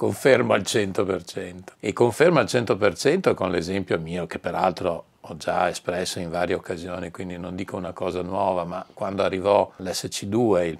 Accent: native